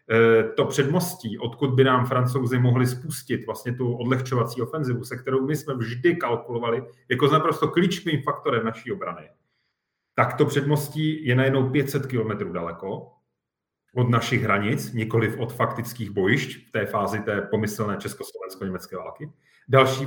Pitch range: 120-150 Hz